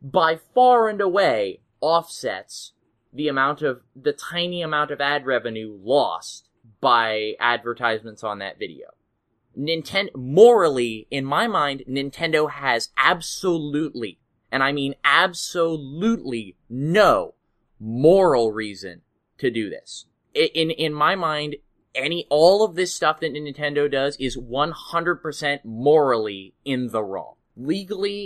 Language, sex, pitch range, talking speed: English, male, 120-165 Hz, 120 wpm